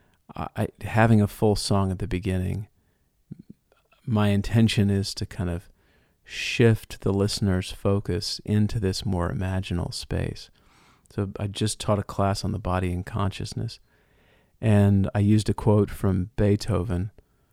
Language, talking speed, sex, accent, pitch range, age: English, 135 wpm, male, American, 90-110 Hz, 40-59